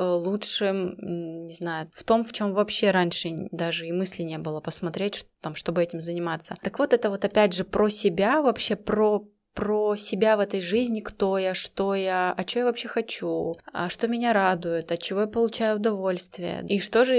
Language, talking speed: Russian, 200 wpm